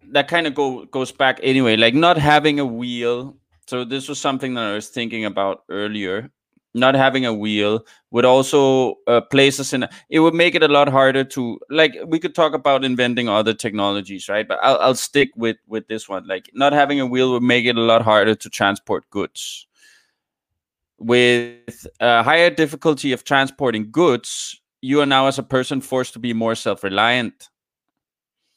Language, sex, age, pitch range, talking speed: English, male, 20-39, 110-135 Hz, 185 wpm